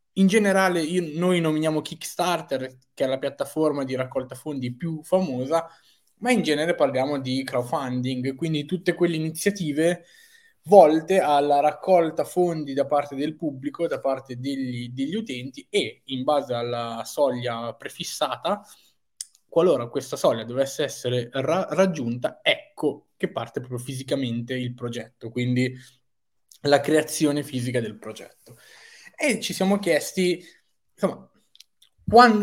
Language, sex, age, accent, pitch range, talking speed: Italian, male, 20-39, native, 125-165 Hz, 125 wpm